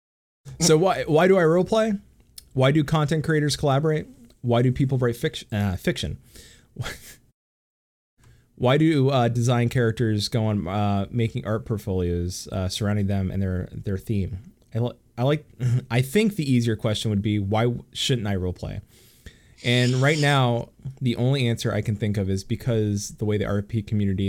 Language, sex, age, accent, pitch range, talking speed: English, male, 20-39, American, 100-125 Hz, 170 wpm